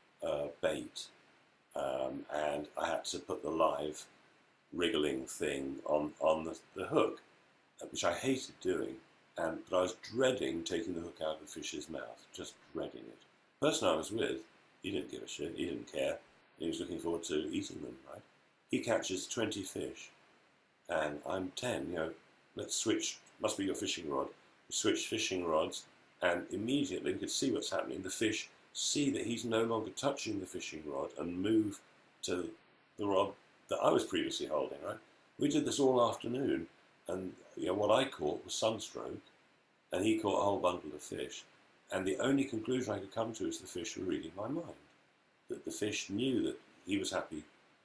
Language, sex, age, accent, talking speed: English, male, 50-69, British, 190 wpm